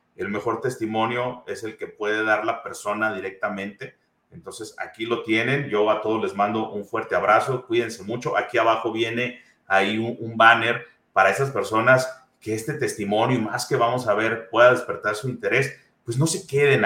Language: Spanish